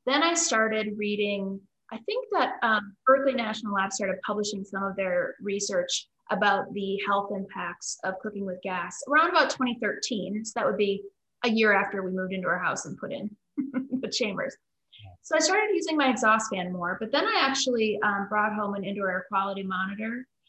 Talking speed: 190 wpm